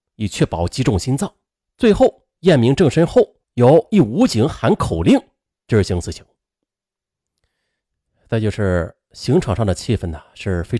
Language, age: Chinese, 30-49